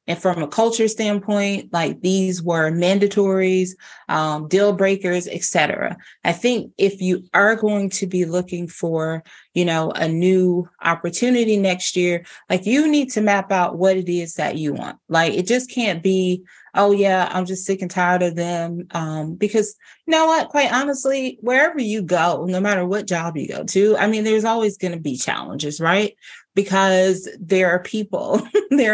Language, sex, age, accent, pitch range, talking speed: English, female, 30-49, American, 180-215 Hz, 180 wpm